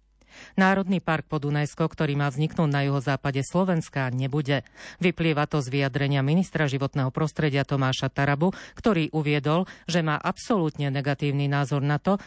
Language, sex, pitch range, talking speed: Slovak, female, 140-165 Hz, 140 wpm